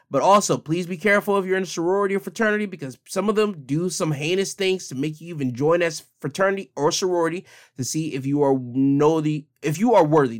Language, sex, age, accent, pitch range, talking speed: English, male, 20-39, American, 130-210 Hz, 225 wpm